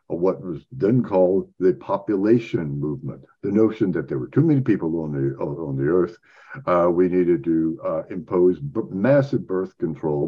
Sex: male